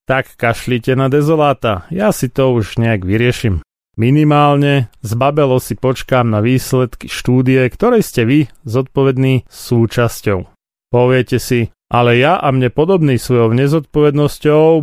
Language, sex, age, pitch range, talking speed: Slovak, male, 30-49, 115-150 Hz, 125 wpm